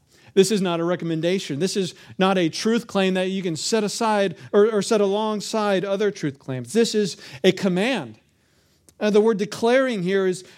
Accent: American